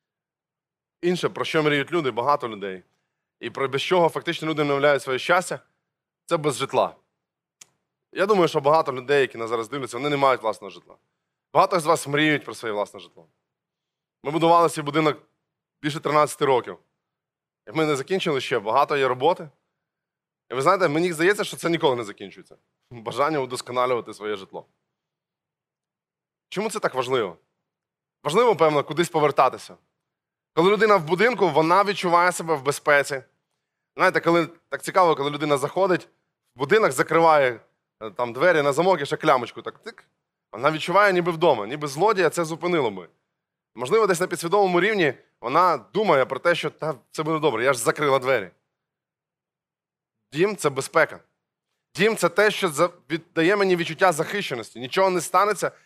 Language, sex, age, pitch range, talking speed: Ukrainian, male, 20-39, 140-175 Hz, 160 wpm